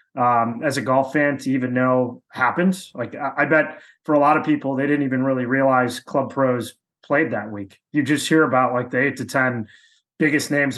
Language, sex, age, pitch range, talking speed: English, male, 20-39, 130-165 Hz, 215 wpm